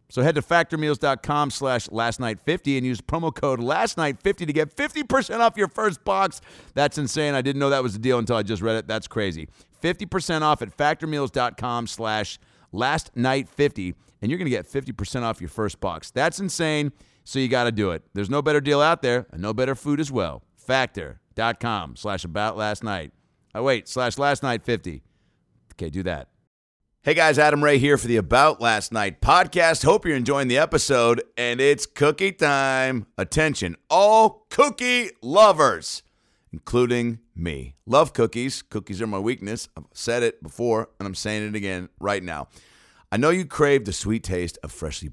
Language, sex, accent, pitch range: English, male, American, 100-145 Hz